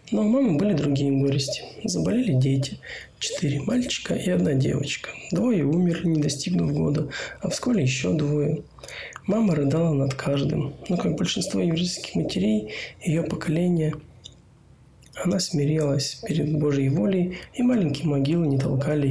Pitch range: 140-180 Hz